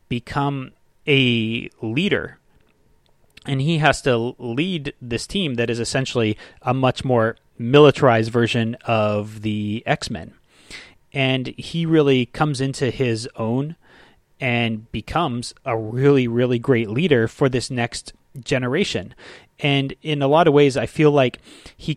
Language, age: English, 30-49